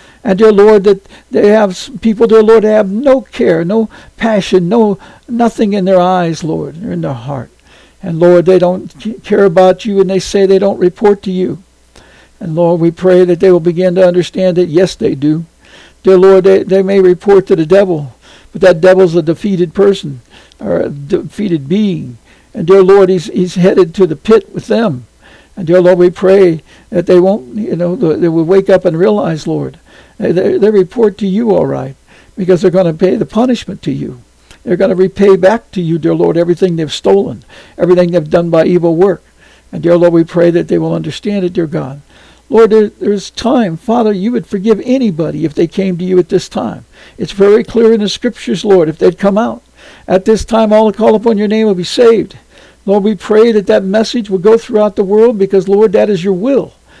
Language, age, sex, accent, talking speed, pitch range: English, 60-79, male, American, 215 wpm, 180-210 Hz